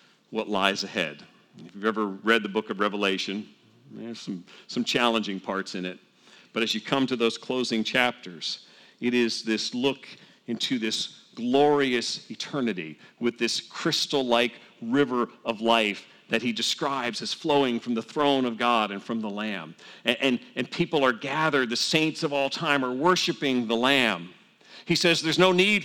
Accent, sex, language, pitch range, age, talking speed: American, male, English, 115-155 Hz, 40-59, 170 wpm